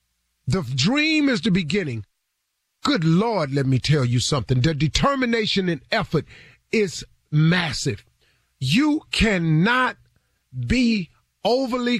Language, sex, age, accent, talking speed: English, male, 40-59, American, 110 wpm